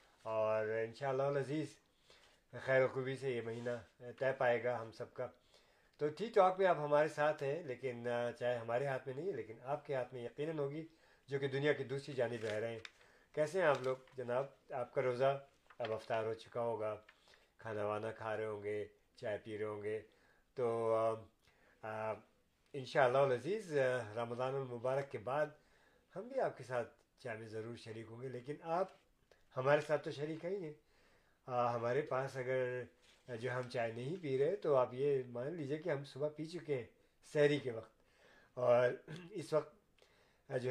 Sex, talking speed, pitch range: male, 185 wpm, 120-150 Hz